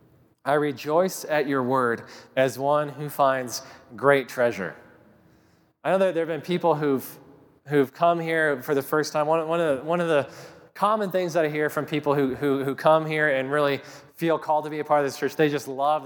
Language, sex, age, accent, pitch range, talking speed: English, male, 20-39, American, 130-155 Hz, 225 wpm